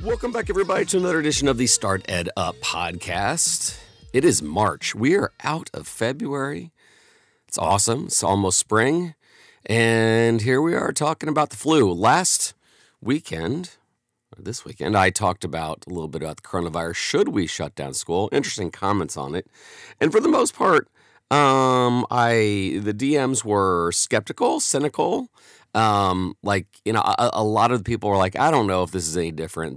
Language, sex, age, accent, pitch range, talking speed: English, male, 40-59, American, 85-115 Hz, 175 wpm